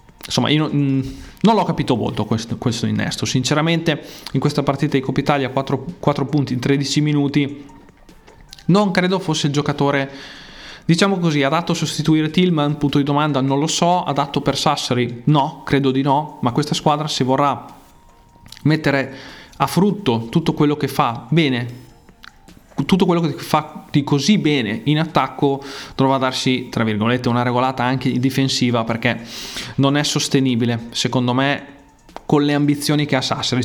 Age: 20-39